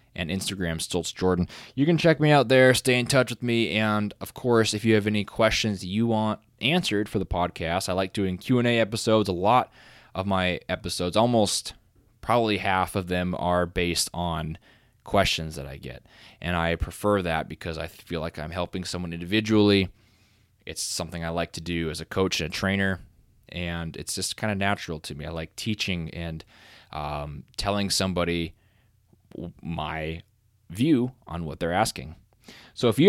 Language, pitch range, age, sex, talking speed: English, 90-115 Hz, 20-39, male, 180 wpm